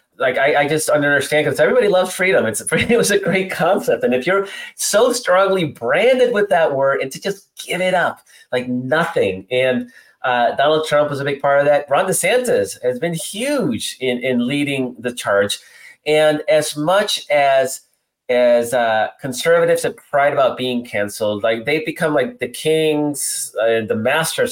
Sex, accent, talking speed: male, American, 180 wpm